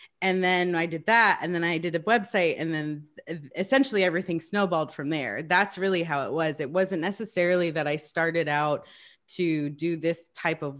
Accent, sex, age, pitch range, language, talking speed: American, female, 30-49, 150-180 Hz, English, 195 wpm